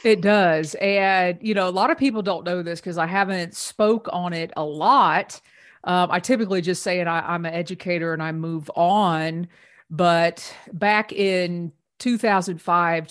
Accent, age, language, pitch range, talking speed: American, 40-59, English, 165-195 Hz, 175 wpm